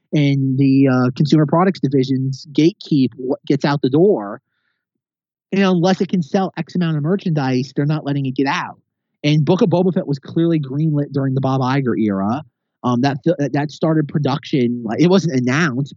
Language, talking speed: English, 180 wpm